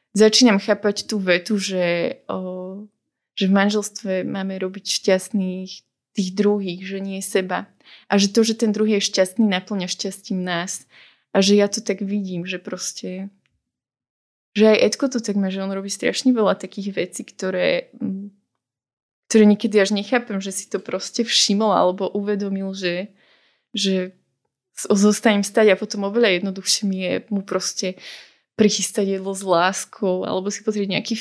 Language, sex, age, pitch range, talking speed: Slovak, female, 20-39, 195-225 Hz, 160 wpm